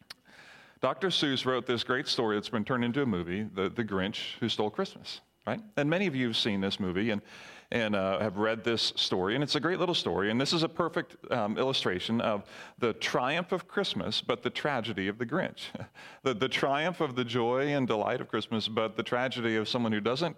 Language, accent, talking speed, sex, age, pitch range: English, American, 220 wpm, male, 40-59, 110-170 Hz